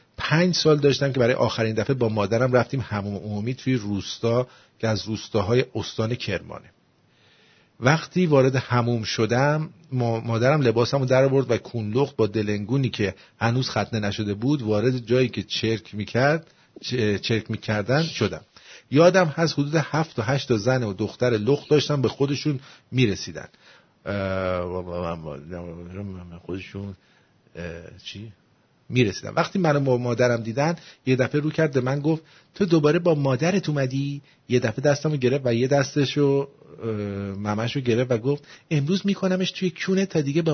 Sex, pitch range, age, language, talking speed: male, 110-145 Hz, 50-69, English, 140 wpm